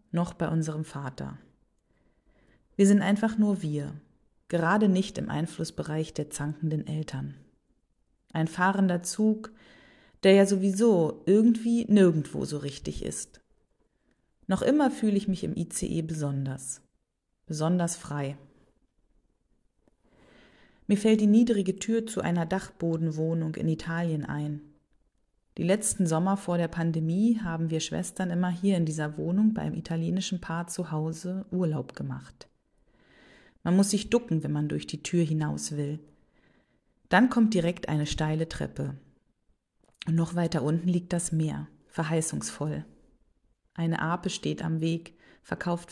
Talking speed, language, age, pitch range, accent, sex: 130 wpm, German, 30-49, 150-190 Hz, German, female